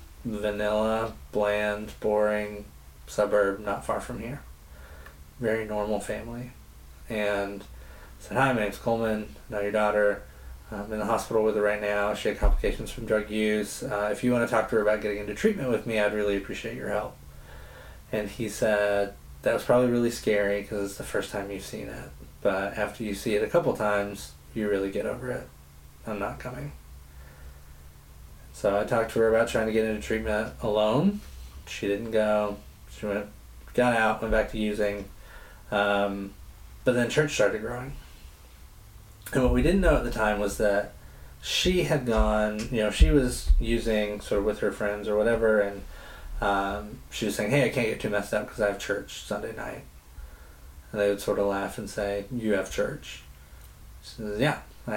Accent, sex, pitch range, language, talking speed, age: American, male, 70-110 Hz, English, 190 wpm, 20-39